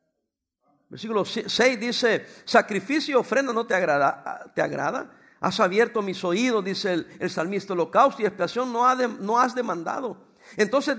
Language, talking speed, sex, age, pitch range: English, 155 wpm, male, 50-69, 195-265 Hz